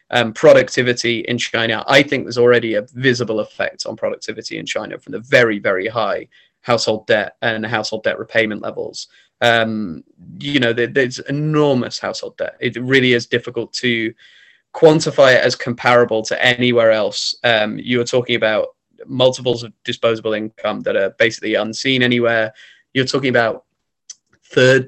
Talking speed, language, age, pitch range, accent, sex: 155 wpm, English, 20-39, 110-125 Hz, British, male